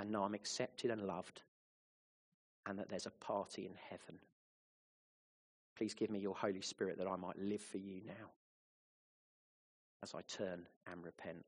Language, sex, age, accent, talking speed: English, male, 30-49, British, 160 wpm